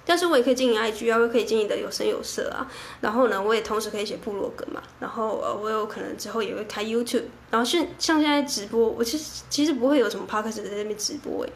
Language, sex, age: Chinese, female, 10-29